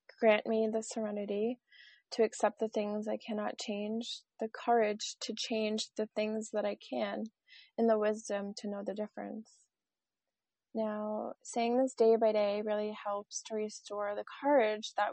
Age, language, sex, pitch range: 20-39, English, female, 205-230 Hz